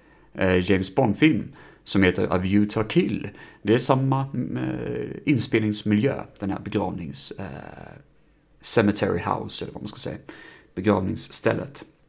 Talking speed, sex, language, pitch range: 125 wpm, male, Swedish, 100-120 Hz